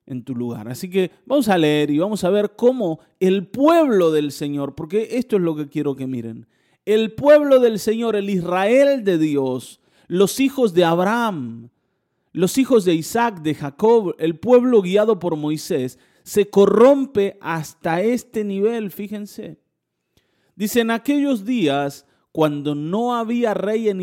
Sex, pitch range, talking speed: male, 145-225 Hz, 155 wpm